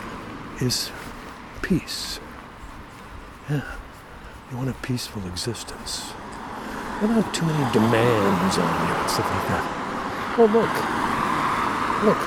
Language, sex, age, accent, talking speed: English, male, 60-79, American, 110 wpm